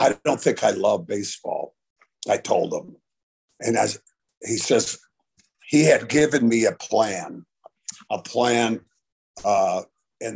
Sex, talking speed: male, 135 wpm